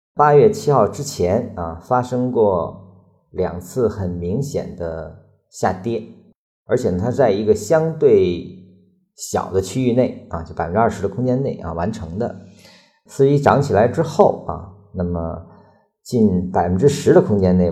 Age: 50-69